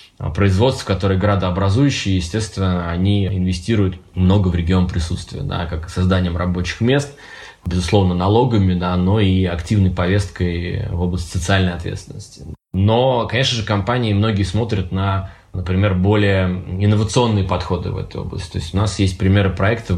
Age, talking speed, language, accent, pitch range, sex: 20-39, 140 wpm, Russian, native, 95-110 Hz, male